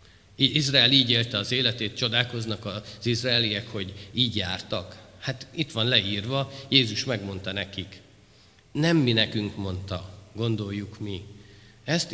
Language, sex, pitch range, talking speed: Hungarian, male, 105-140 Hz, 125 wpm